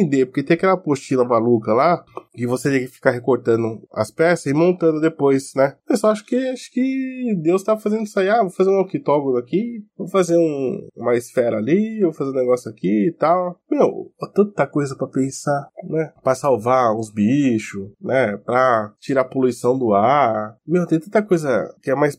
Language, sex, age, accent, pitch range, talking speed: Portuguese, male, 20-39, Brazilian, 130-185 Hz, 190 wpm